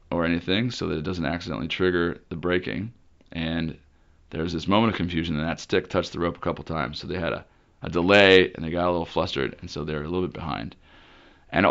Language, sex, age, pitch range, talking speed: English, male, 30-49, 85-100 Hz, 235 wpm